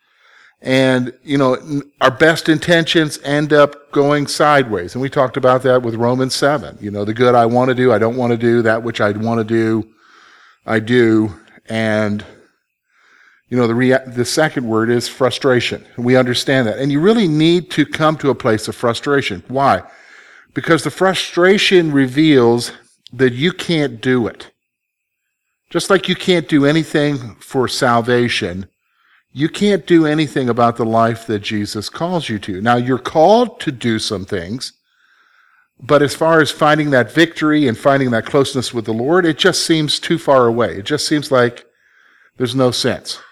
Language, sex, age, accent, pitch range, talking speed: English, male, 50-69, American, 115-155 Hz, 175 wpm